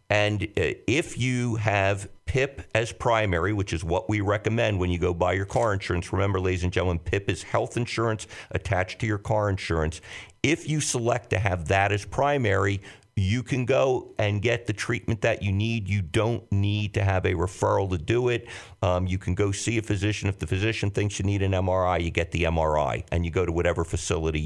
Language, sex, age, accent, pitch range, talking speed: English, male, 50-69, American, 90-110 Hz, 210 wpm